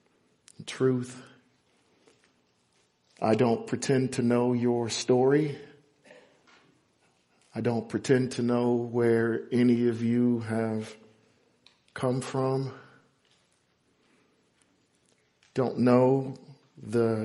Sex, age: male, 50-69